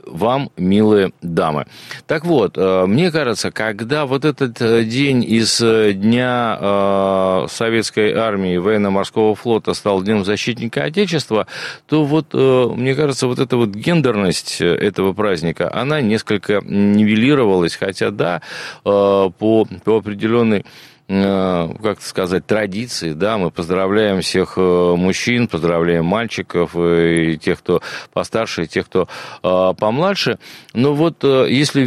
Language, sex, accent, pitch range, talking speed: Russian, male, native, 100-135 Hz, 115 wpm